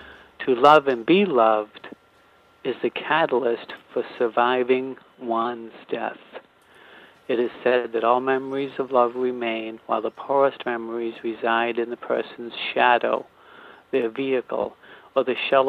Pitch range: 115-140 Hz